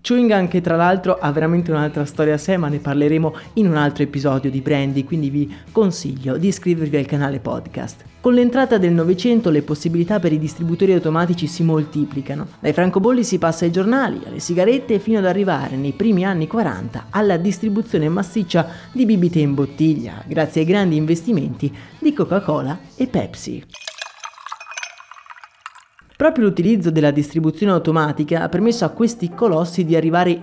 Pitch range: 155-200 Hz